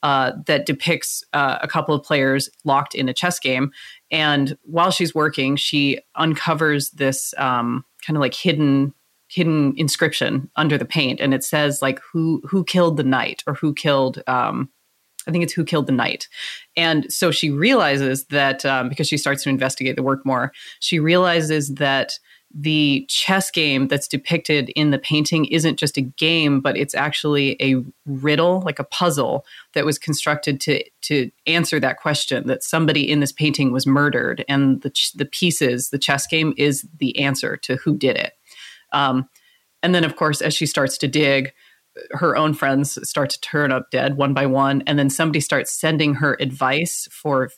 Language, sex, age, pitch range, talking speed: English, female, 30-49, 135-155 Hz, 185 wpm